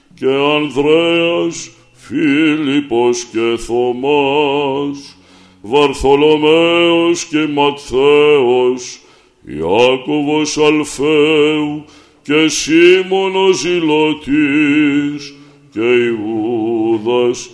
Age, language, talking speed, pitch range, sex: 60-79, Greek, 50 wpm, 125-170 Hz, male